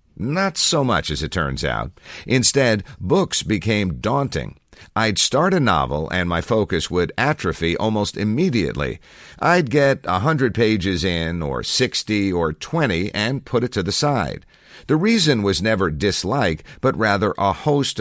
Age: 50-69